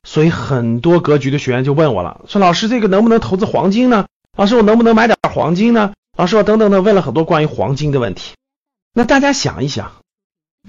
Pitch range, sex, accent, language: 130-205 Hz, male, native, Chinese